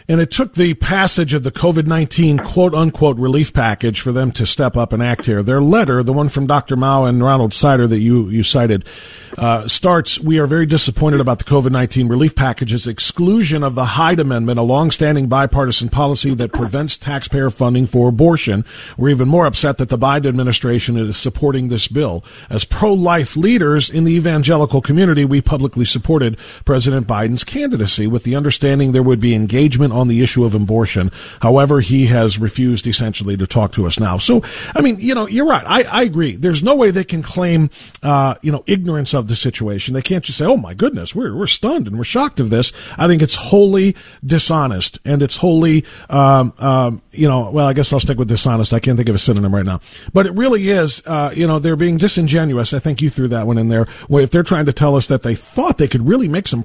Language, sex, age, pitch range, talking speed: English, male, 50-69, 120-160 Hz, 215 wpm